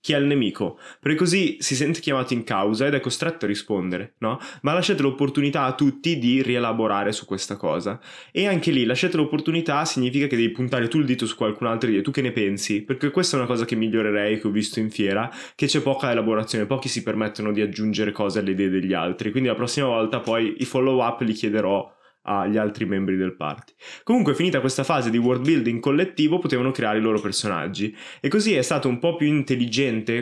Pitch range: 110-145 Hz